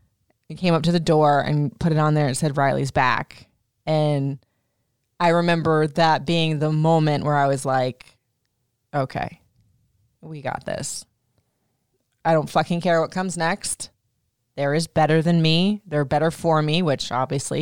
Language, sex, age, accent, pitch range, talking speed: English, female, 20-39, American, 145-205 Hz, 160 wpm